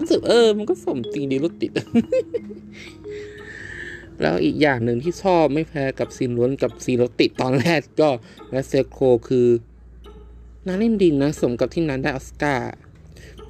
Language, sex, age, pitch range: Thai, male, 20-39, 120-155 Hz